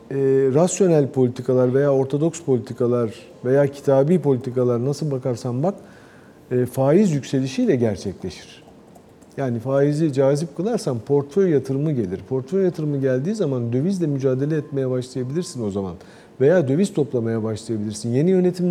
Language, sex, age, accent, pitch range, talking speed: Turkish, male, 50-69, native, 125-170 Hz, 125 wpm